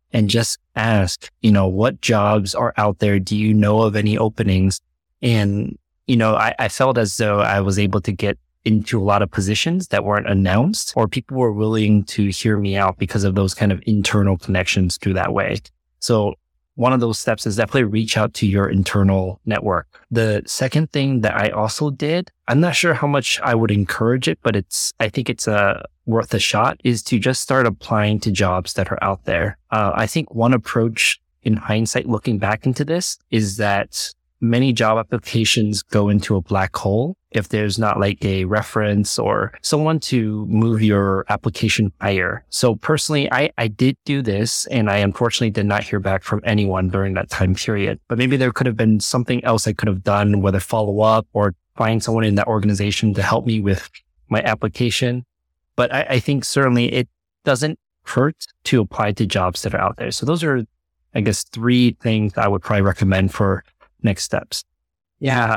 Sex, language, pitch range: male, English, 100-120 Hz